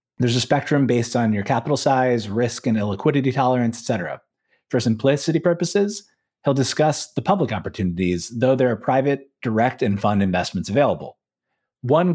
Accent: American